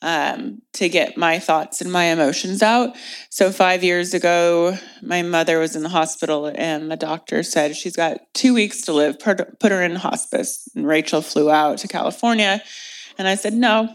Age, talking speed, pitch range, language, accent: 20-39, 185 wpm, 170-220 Hz, English, American